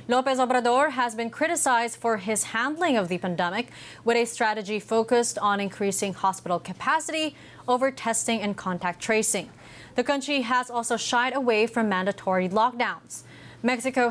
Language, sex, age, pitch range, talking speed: English, female, 20-39, 205-255 Hz, 145 wpm